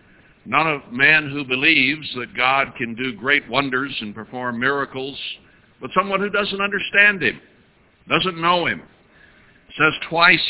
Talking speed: 150 wpm